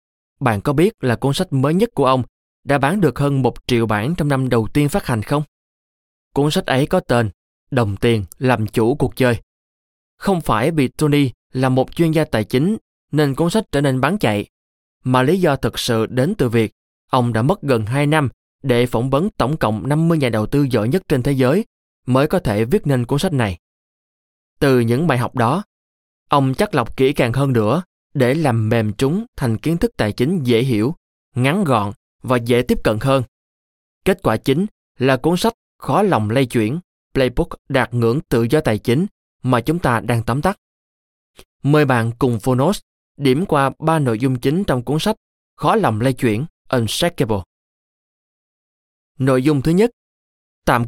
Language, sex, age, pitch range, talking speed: Vietnamese, male, 20-39, 115-150 Hz, 195 wpm